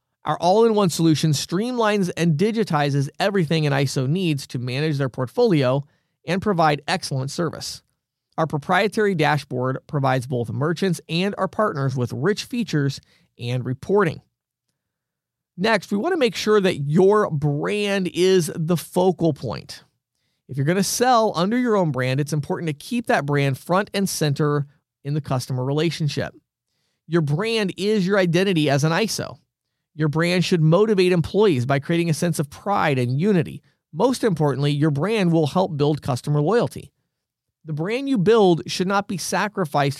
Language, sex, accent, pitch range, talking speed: English, male, American, 140-185 Hz, 160 wpm